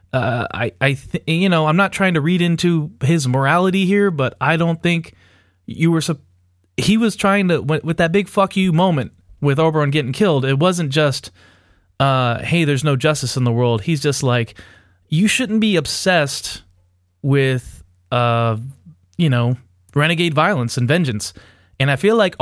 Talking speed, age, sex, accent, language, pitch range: 175 wpm, 20-39, male, American, English, 120-180 Hz